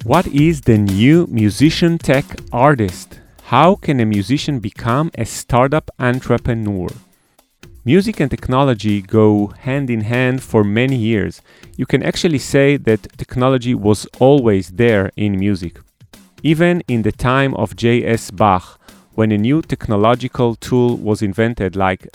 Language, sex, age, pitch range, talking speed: English, male, 30-49, 105-135 Hz, 140 wpm